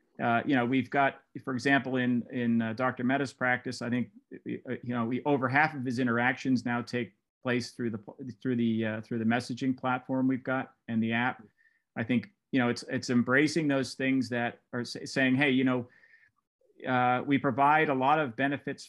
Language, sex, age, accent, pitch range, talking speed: English, male, 40-59, American, 120-135 Hz, 195 wpm